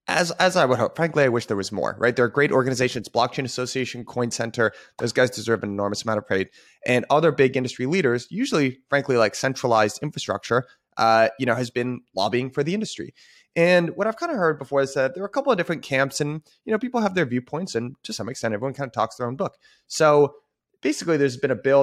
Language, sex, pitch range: English, male, 110-145 Hz